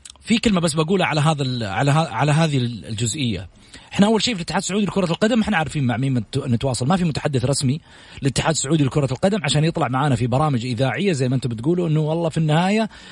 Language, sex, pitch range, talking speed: English, male, 140-185 Hz, 210 wpm